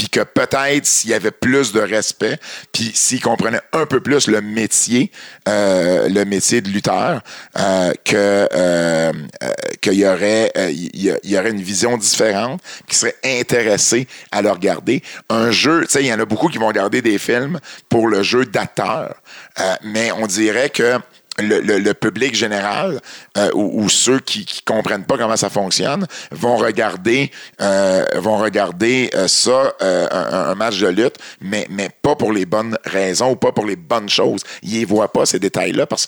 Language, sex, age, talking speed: French, male, 50-69, 190 wpm